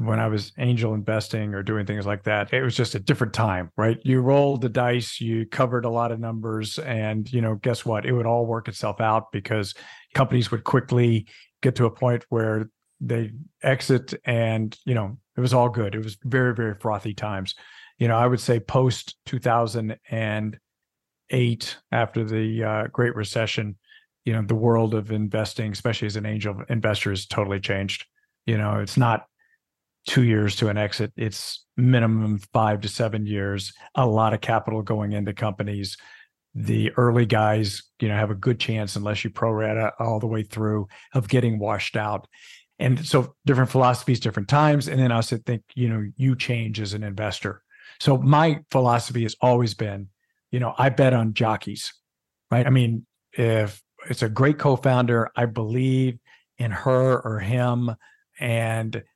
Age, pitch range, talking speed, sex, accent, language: 50-69, 110-125 Hz, 180 wpm, male, American, English